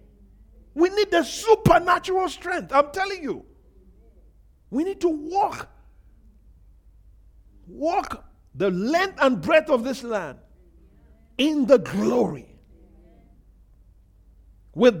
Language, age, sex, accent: English, 50-69, male, Nigerian